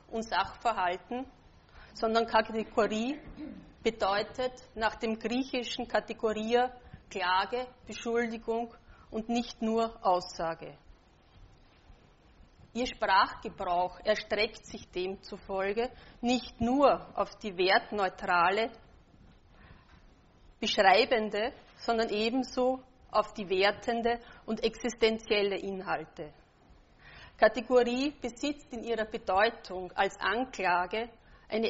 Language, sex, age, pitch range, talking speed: German, female, 30-49, 205-240 Hz, 80 wpm